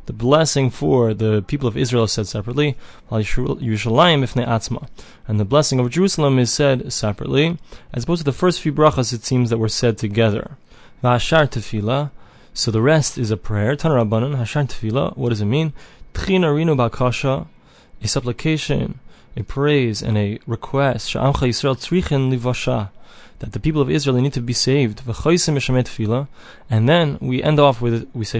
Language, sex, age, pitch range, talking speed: English, male, 20-39, 115-145 Hz, 135 wpm